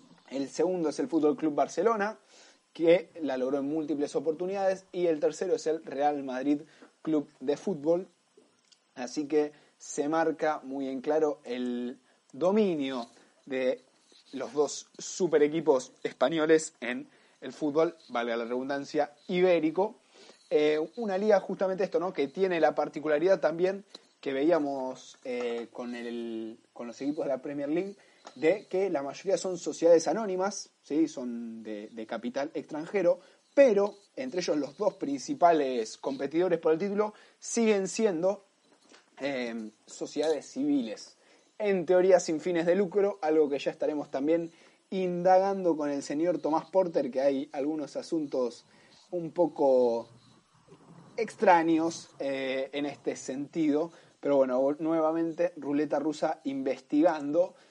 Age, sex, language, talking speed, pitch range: 20-39, male, Spanish, 135 wpm, 140-190 Hz